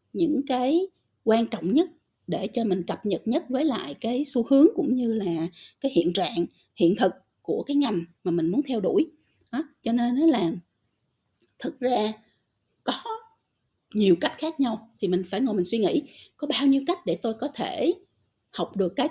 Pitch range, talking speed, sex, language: 190-265 Hz, 195 wpm, female, Vietnamese